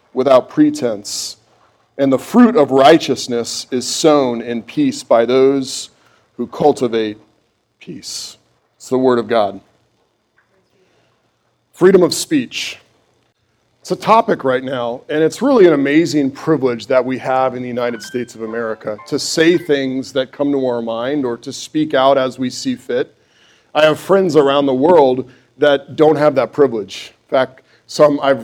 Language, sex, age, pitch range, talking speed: English, male, 40-59, 125-160 Hz, 160 wpm